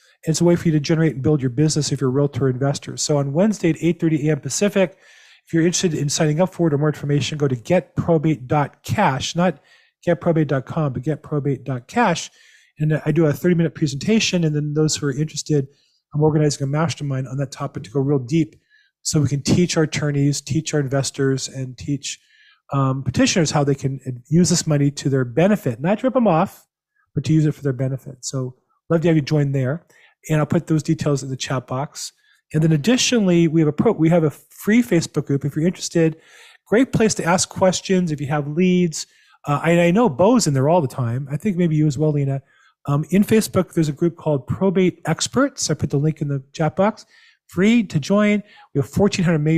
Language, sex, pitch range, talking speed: English, male, 140-175 Hz, 220 wpm